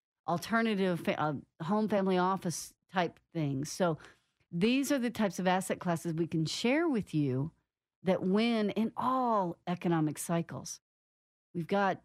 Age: 40-59